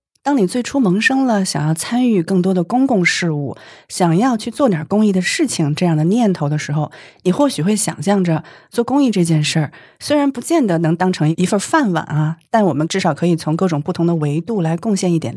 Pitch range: 155-210 Hz